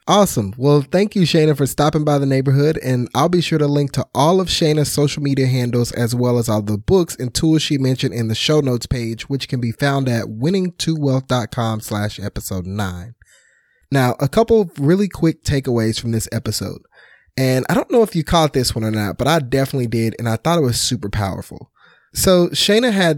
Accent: American